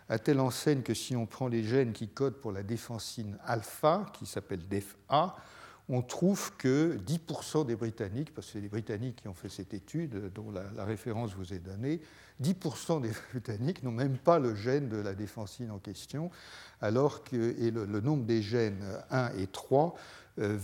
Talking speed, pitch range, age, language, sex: 190 wpm, 105-145 Hz, 60-79, French, male